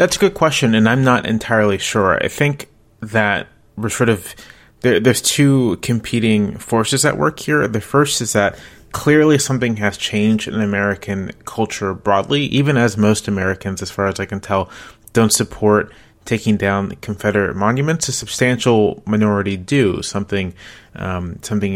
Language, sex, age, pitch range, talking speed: English, male, 30-49, 95-115 Hz, 155 wpm